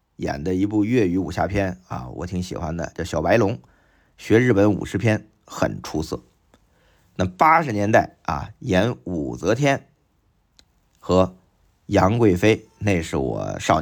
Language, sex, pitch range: Chinese, male, 90-115 Hz